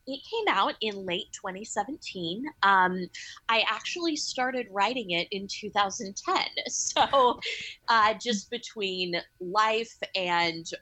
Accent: American